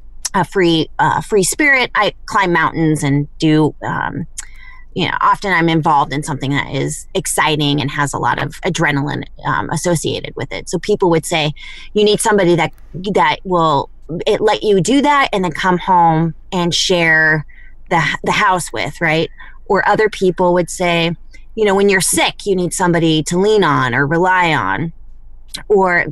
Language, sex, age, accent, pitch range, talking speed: English, female, 20-39, American, 150-195 Hz, 175 wpm